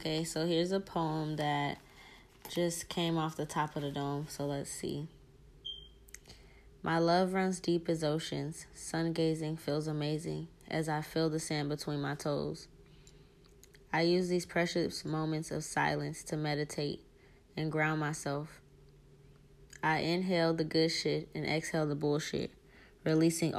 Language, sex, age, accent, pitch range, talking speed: English, female, 10-29, American, 145-165 Hz, 145 wpm